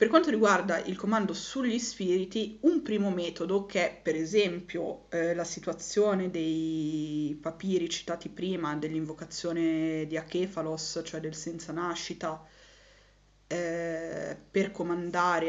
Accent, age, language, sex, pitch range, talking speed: native, 20-39, Italian, female, 165-195 Hz, 120 wpm